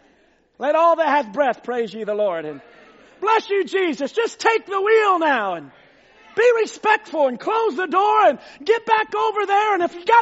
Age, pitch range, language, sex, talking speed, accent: 40-59, 260-380 Hz, English, male, 200 wpm, American